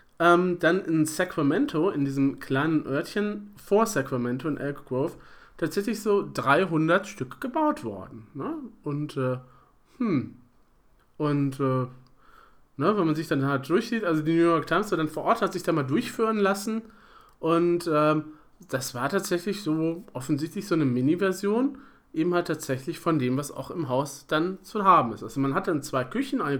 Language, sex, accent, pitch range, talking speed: German, male, German, 145-200 Hz, 165 wpm